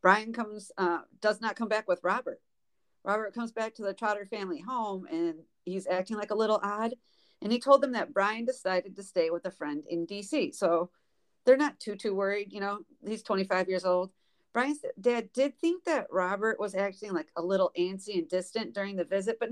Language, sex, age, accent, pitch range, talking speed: English, female, 40-59, American, 180-235 Hz, 210 wpm